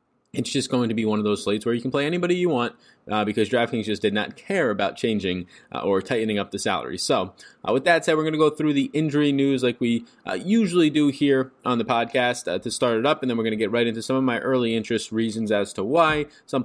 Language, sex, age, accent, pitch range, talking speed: English, male, 20-39, American, 105-135 Hz, 275 wpm